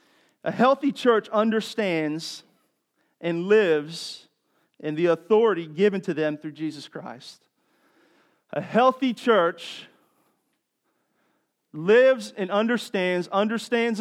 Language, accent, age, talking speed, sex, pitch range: English, American, 40-59, 95 wpm, male, 185-250 Hz